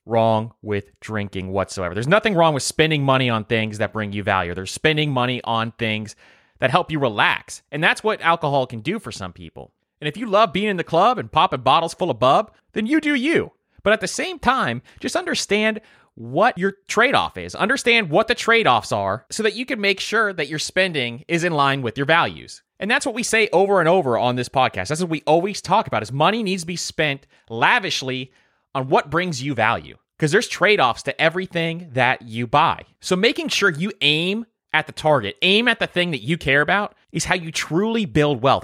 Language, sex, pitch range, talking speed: English, male, 130-195 Hz, 220 wpm